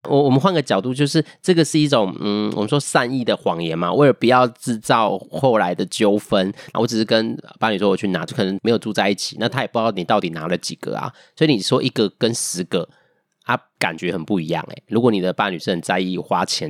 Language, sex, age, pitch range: Chinese, male, 30-49, 95-120 Hz